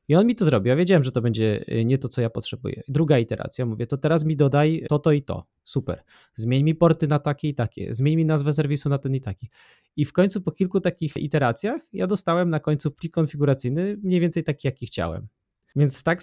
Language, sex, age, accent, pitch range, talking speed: Polish, male, 20-39, native, 125-155 Hz, 230 wpm